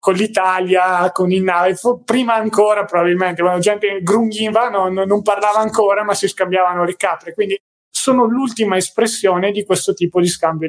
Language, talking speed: Italian, 165 wpm